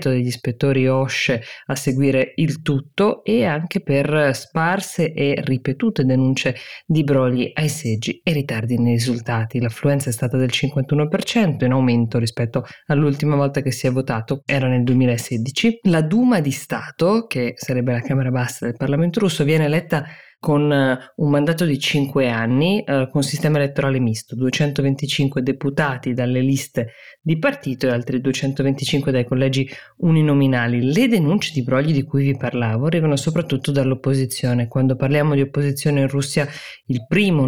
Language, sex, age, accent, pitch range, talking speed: Italian, female, 20-39, native, 130-155 Hz, 150 wpm